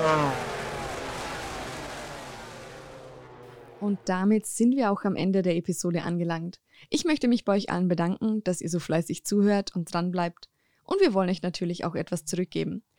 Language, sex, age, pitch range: German, female, 20-39, 175-215 Hz